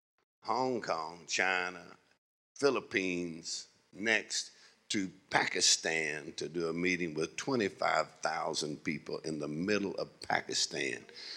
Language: English